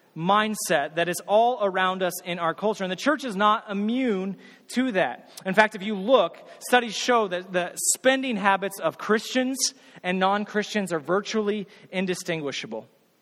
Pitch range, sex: 160-210 Hz, male